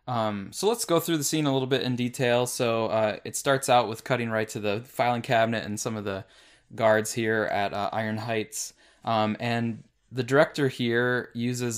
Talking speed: 205 wpm